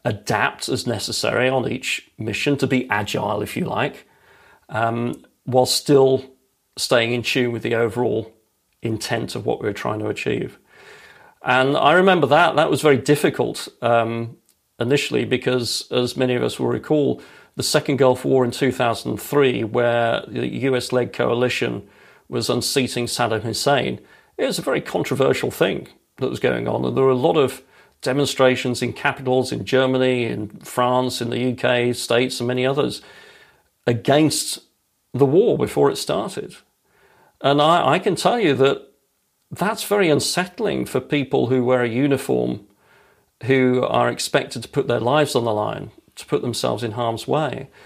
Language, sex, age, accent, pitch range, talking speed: German, male, 40-59, British, 120-140 Hz, 160 wpm